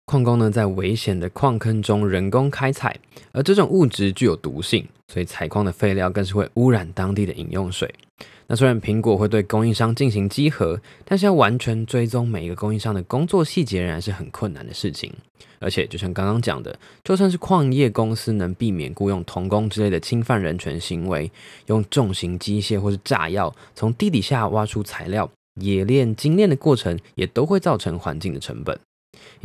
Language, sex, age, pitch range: Chinese, male, 20-39, 95-125 Hz